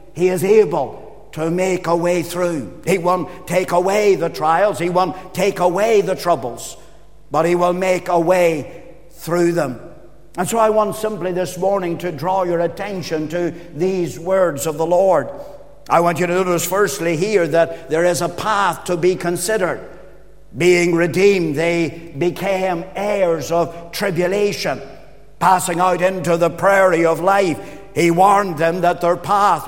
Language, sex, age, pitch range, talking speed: English, male, 60-79, 170-190 Hz, 160 wpm